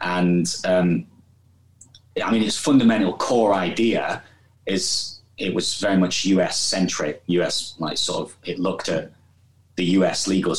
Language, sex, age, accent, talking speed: English, male, 30-49, British, 145 wpm